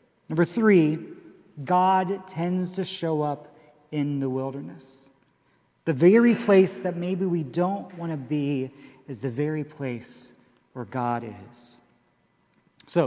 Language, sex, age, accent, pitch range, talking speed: English, male, 40-59, American, 160-205 Hz, 130 wpm